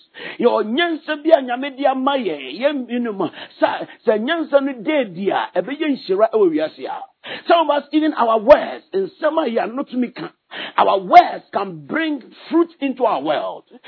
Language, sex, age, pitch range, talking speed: English, male, 50-69, 230-320 Hz, 145 wpm